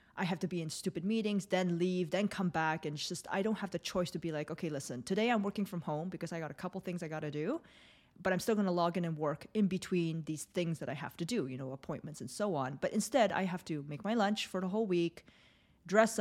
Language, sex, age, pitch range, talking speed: English, female, 20-39, 155-200 Hz, 285 wpm